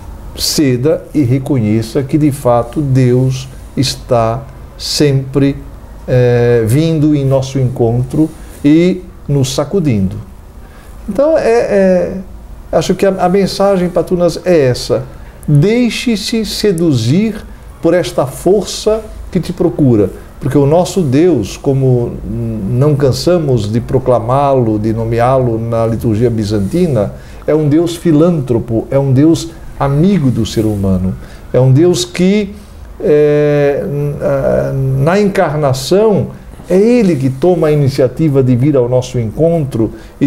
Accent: Brazilian